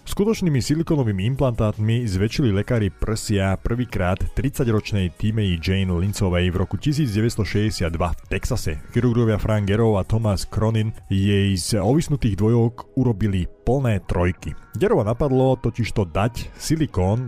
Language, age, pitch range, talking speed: Slovak, 30-49, 95-115 Hz, 120 wpm